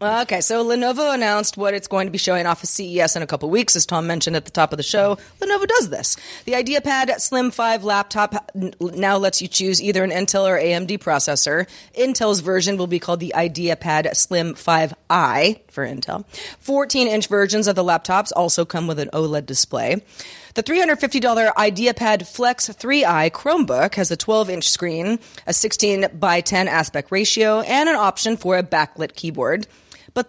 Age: 30-49